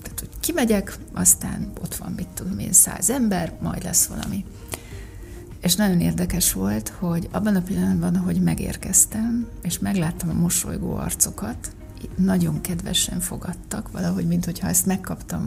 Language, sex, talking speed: Hungarian, female, 130 wpm